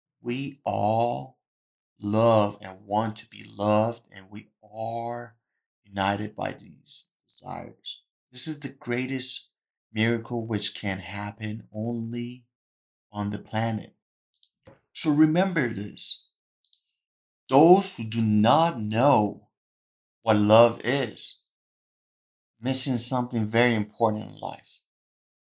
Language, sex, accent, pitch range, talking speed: English, male, American, 105-120 Hz, 105 wpm